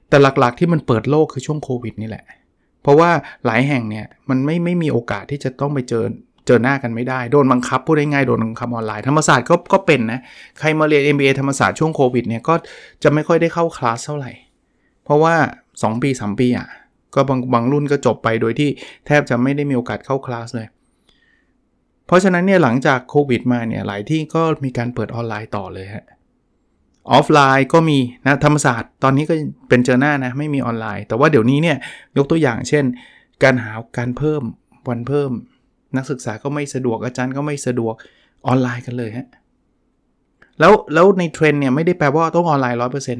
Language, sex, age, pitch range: Thai, male, 20-39, 120-150 Hz